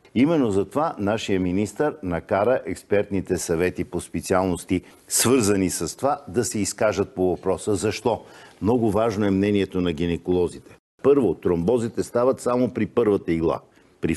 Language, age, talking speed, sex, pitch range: Bulgarian, 50-69, 135 wpm, male, 90-115 Hz